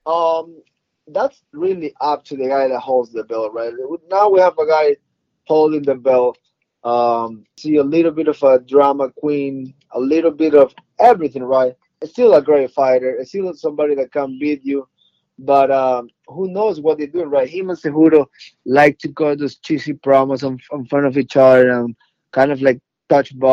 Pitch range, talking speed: 130-160 Hz, 190 wpm